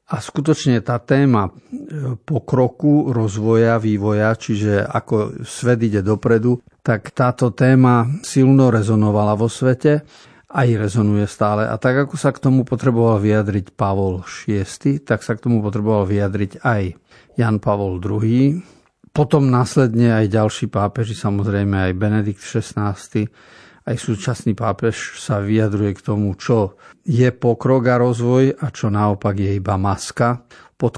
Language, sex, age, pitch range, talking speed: Slovak, male, 50-69, 105-125 Hz, 135 wpm